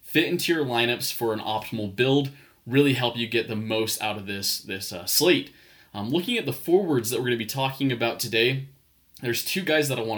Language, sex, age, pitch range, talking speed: English, male, 20-39, 110-135 Hz, 230 wpm